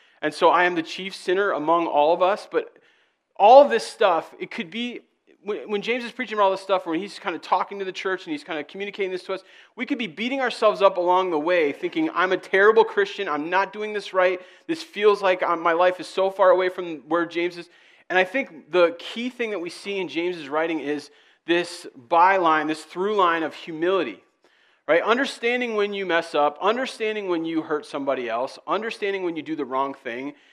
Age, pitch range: 40-59, 145-200 Hz